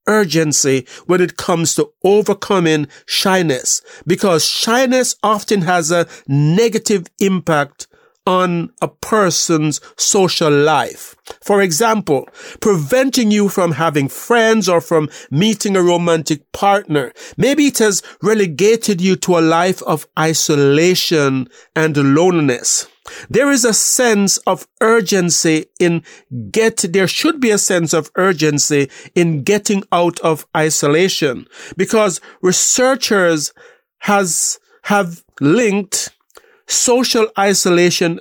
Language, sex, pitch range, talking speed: English, male, 160-215 Hz, 110 wpm